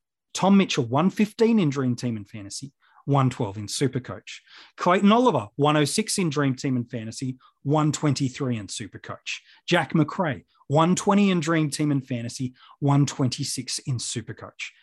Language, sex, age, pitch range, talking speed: English, male, 30-49, 130-180 Hz, 135 wpm